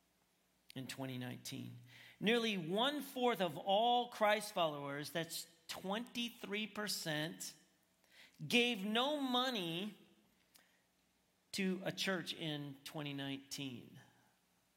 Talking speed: 75 wpm